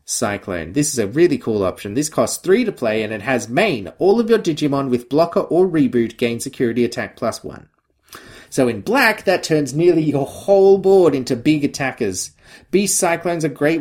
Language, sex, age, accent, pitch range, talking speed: English, male, 30-49, Australian, 120-165 Hz, 195 wpm